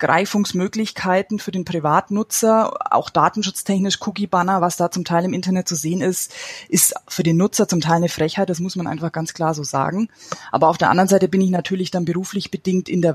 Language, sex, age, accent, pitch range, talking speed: German, female, 20-39, German, 170-205 Hz, 210 wpm